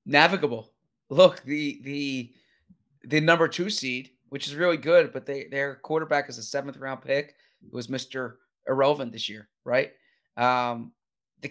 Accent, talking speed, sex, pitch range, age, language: American, 155 wpm, male, 125-145 Hz, 30-49, English